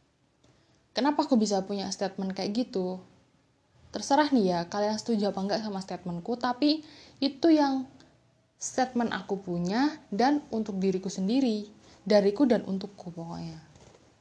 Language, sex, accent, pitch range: Indonesian, female, native, 195-245 Hz